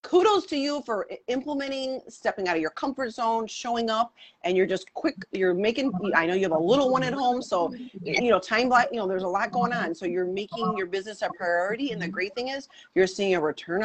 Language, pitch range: English, 180-235 Hz